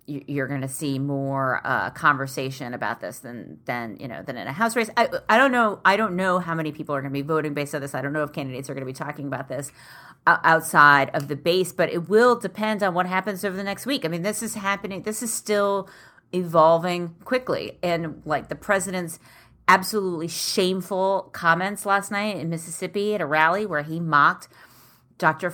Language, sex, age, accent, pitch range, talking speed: English, female, 30-49, American, 145-180 Hz, 215 wpm